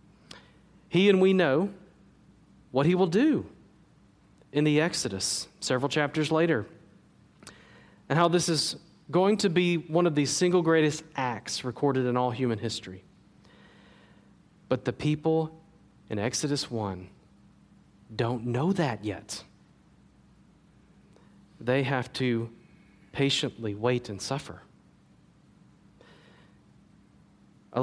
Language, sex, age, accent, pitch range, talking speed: English, male, 40-59, American, 125-160 Hz, 110 wpm